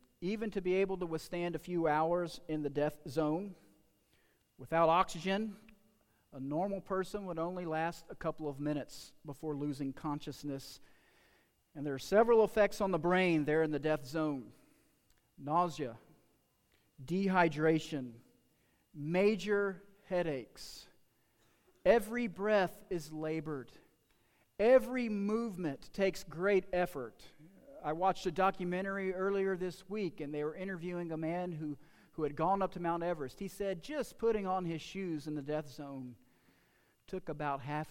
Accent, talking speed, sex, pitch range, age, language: American, 140 wpm, male, 145-185 Hz, 40-59, English